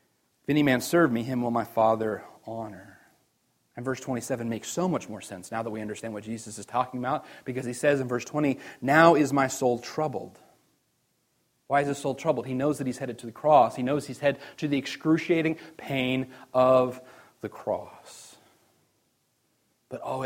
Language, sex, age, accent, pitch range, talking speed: English, male, 30-49, American, 120-145 Hz, 190 wpm